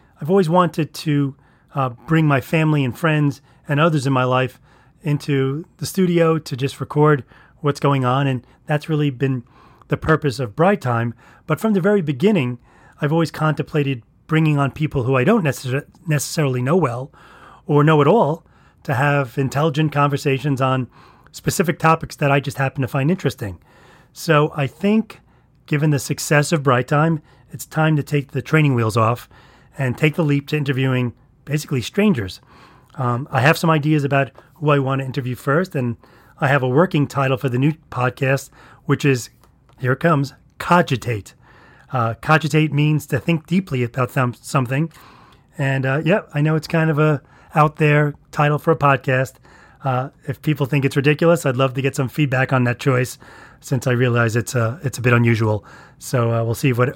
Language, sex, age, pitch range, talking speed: English, male, 30-49, 130-155 Hz, 180 wpm